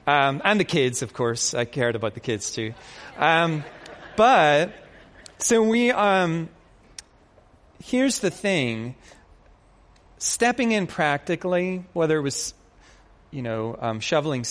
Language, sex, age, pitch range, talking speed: English, male, 30-49, 125-180 Hz, 125 wpm